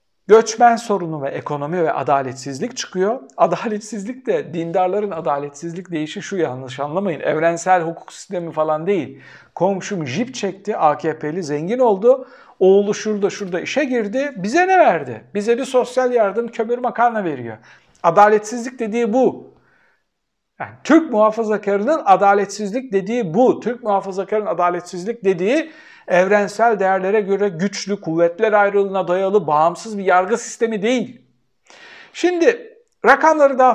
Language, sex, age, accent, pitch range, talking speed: Turkish, male, 60-79, native, 170-230 Hz, 125 wpm